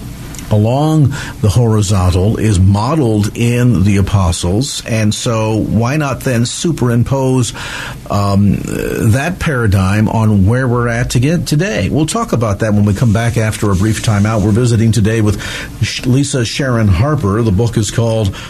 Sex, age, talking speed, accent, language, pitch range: male, 50-69, 150 wpm, American, English, 105-135 Hz